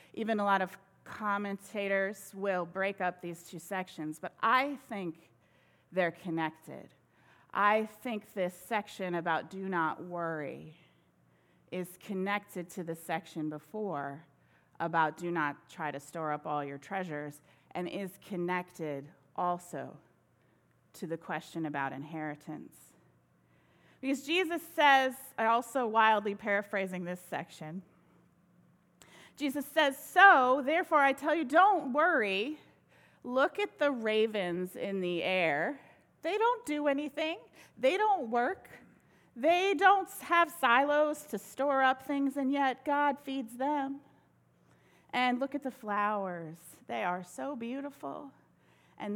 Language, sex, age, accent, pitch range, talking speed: English, female, 30-49, American, 170-275 Hz, 125 wpm